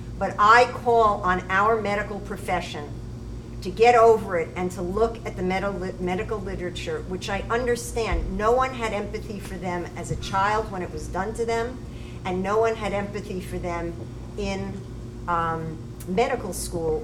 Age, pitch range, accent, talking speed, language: 50-69, 170-220 Hz, American, 165 wpm, English